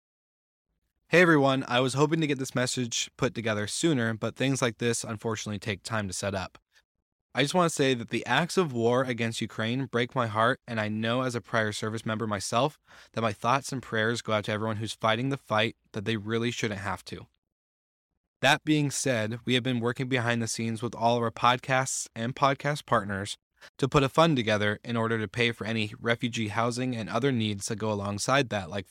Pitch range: 105-125 Hz